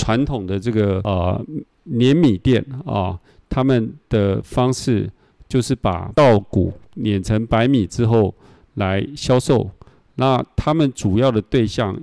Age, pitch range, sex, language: 50-69, 105-140 Hz, male, Chinese